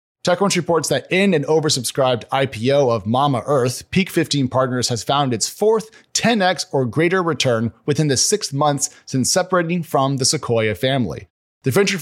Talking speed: 165 wpm